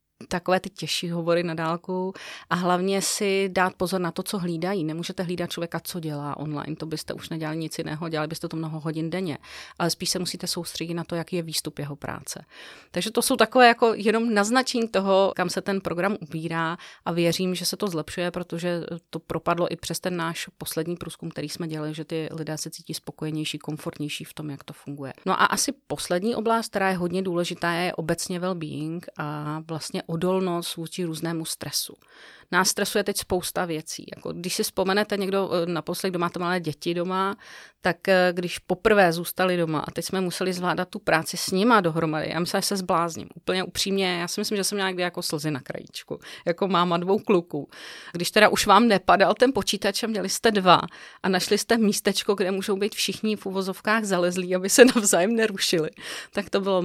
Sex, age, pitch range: female, 30-49, 165-195 Hz